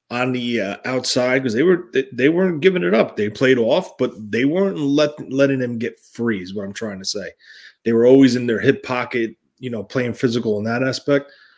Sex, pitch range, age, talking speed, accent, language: male, 110-135 Hz, 30-49, 240 wpm, American, English